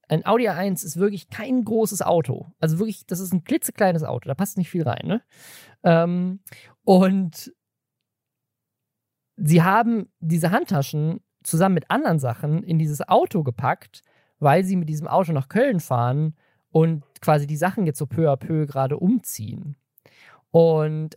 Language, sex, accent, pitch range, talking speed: German, male, German, 140-190 Hz, 155 wpm